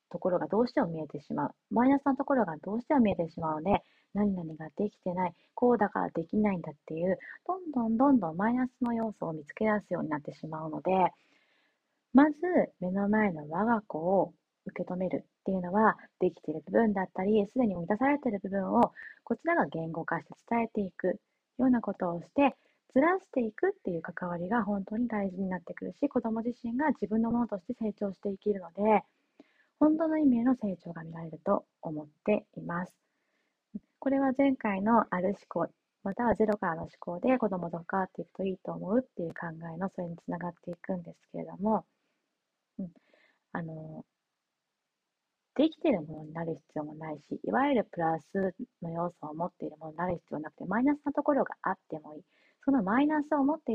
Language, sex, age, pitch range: Japanese, female, 30-49, 175-260 Hz